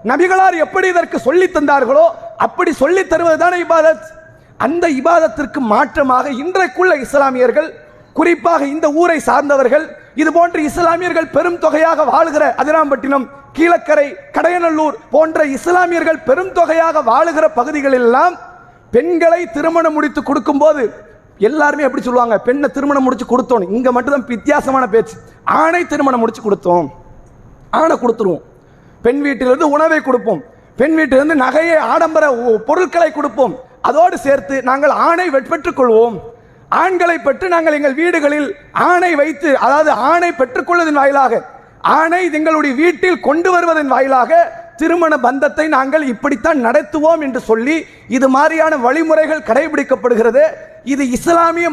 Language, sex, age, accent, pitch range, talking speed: English, male, 30-49, Indian, 260-330 Hz, 145 wpm